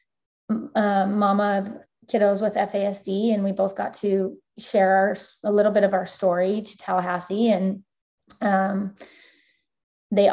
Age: 20-39